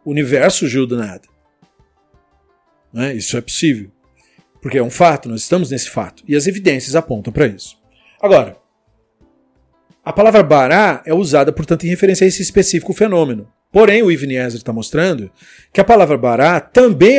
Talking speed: 160 wpm